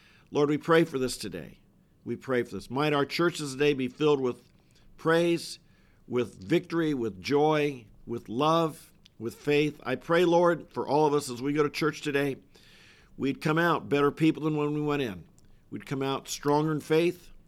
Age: 50-69